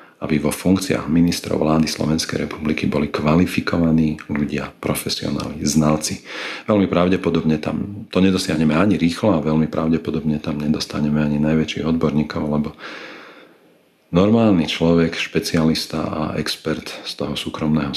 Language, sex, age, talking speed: Slovak, male, 40-59, 120 wpm